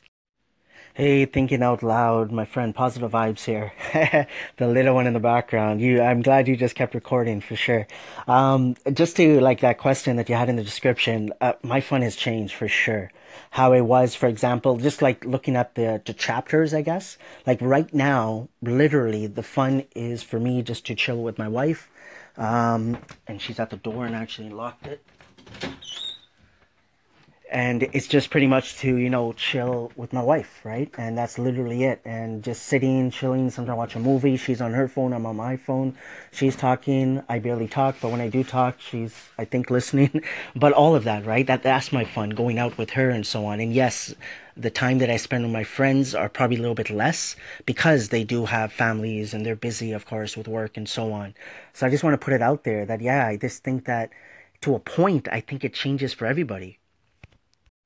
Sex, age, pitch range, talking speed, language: male, 30-49, 115-130 Hz, 210 wpm, English